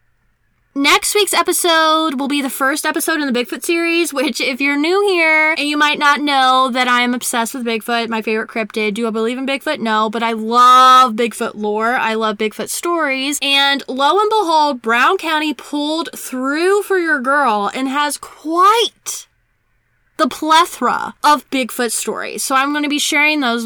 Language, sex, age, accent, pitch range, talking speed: English, female, 10-29, American, 245-315 Hz, 180 wpm